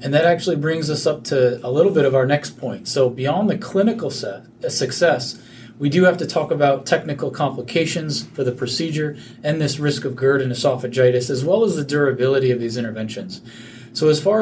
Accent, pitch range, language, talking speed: American, 125-155 Hz, English, 200 wpm